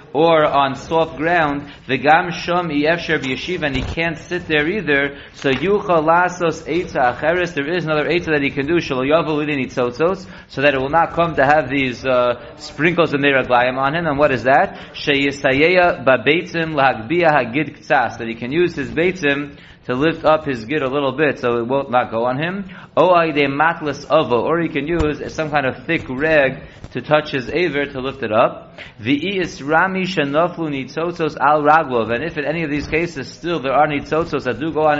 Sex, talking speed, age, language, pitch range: male, 185 wpm, 30-49, English, 130-160 Hz